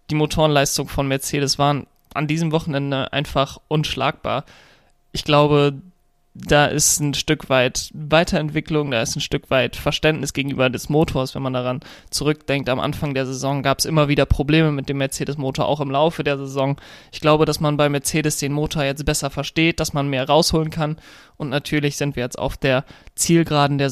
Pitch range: 135-155 Hz